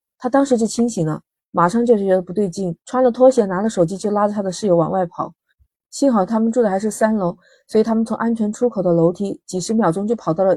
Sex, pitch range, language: female, 180-225 Hz, Chinese